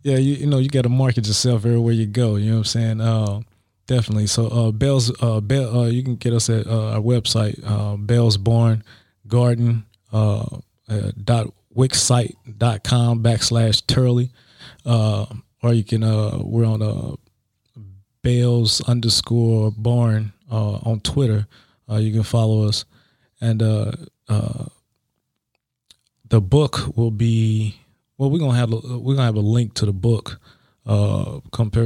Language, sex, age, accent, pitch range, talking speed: English, male, 20-39, American, 105-120 Hz, 160 wpm